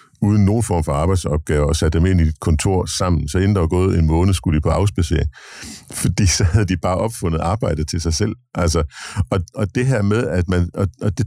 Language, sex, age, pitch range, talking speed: Danish, male, 60-79, 85-105 Hz, 240 wpm